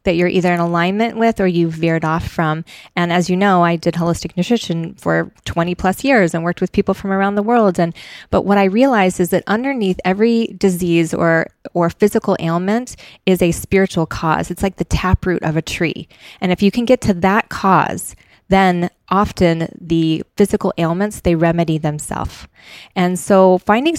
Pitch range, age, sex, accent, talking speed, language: 170-210 Hz, 20-39, female, American, 190 wpm, English